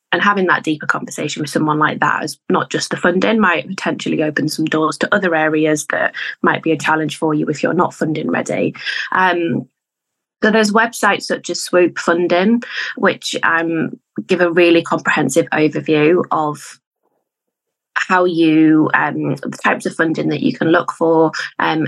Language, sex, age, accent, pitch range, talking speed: English, female, 20-39, British, 155-185 Hz, 175 wpm